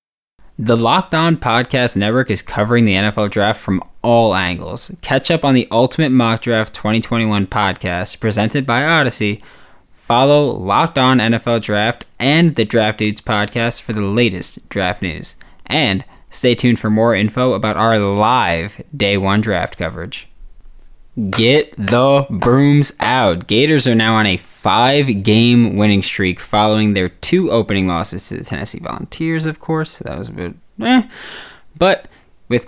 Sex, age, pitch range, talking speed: male, 20-39, 100-135 Hz, 155 wpm